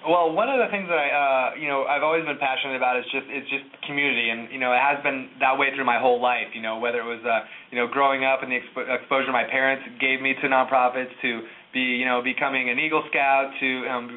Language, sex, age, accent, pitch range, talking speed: English, male, 20-39, American, 125-150 Hz, 265 wpm